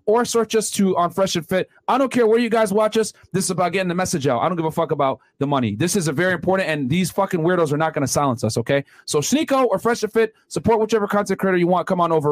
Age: 30-49